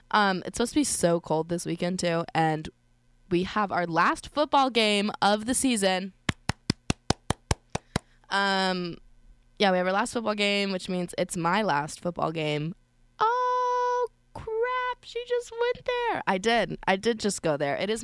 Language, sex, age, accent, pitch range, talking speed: English, female, 20-39, American, 165-215 Hz, 165 wpm